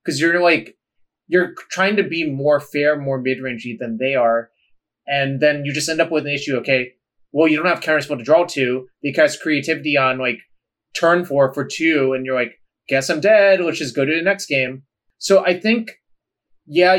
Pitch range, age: 135-170 Hz, 30-49